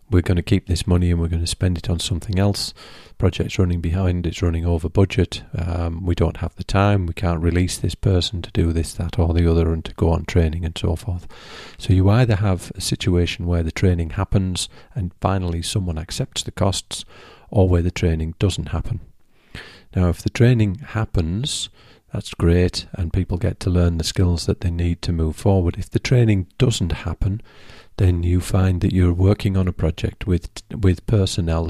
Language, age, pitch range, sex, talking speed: English, 40-59, 85-100 Hz, male, 205 wpm